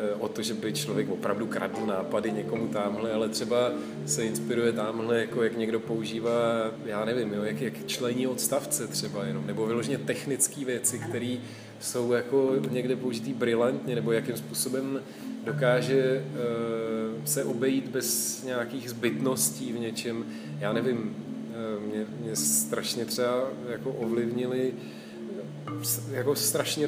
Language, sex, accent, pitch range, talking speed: Czech, male, native, 110-130 Hz, 135 wpm